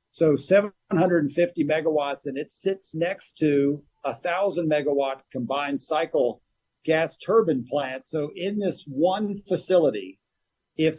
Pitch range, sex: 135-175 Hz, male